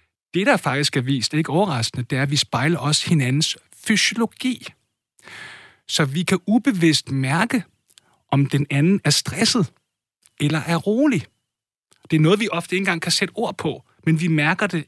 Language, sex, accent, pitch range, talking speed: Danish, male, native, 140-180 Hz, 180 wpm